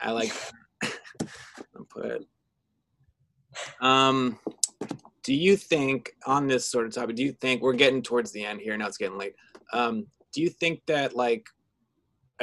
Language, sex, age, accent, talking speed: English, male, 20-39, American, 160 wpm